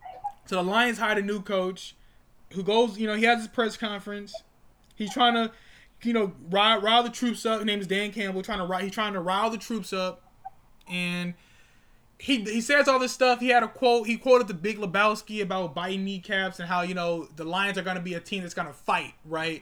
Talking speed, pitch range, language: 240 wpm, 185-245 Hz, English